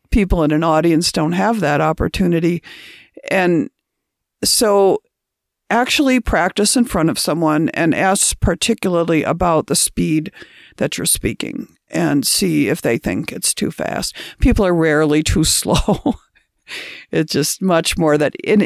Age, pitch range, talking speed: 50-69, 155-205 Hz, 140 wpm